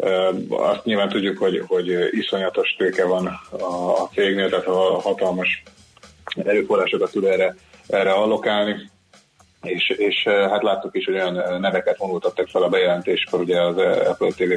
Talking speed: 140 wpm